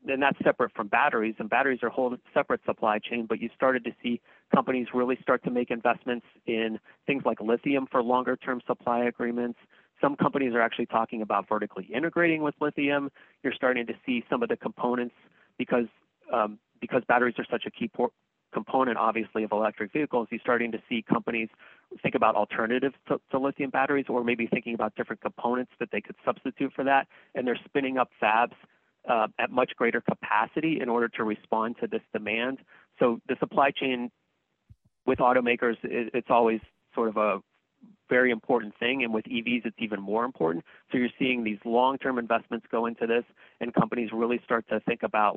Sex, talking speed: male, 185 wpm